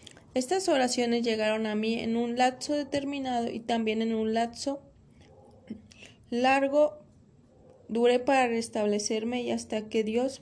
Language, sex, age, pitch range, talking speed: Spanish, female, 20-39, 220-250 Hz, 125 wpm